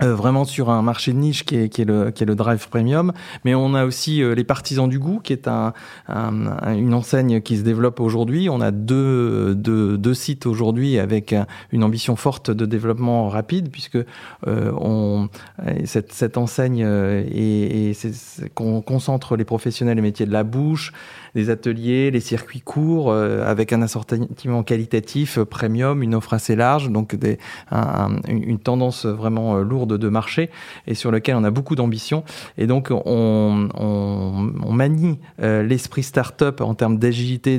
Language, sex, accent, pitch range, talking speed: French, male, French, 110-130 Hz, 175 wpm